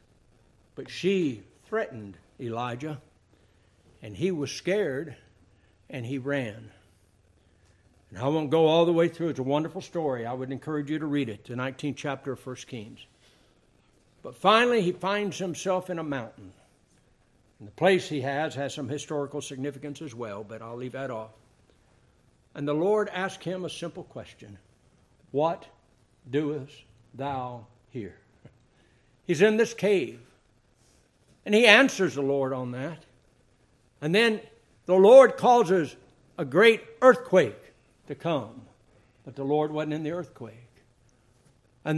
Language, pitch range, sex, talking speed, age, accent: English, 120-165 Hz, male, 145 wpm, 60-79, American